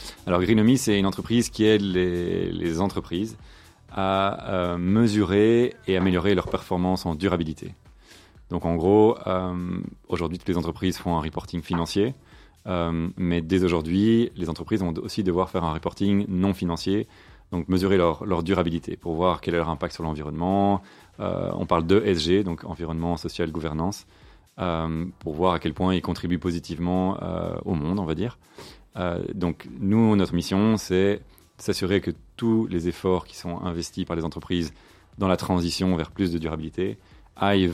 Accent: French